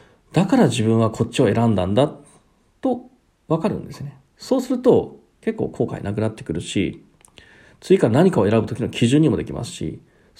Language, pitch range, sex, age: Japanese, 115-175 Hz, male, 40-59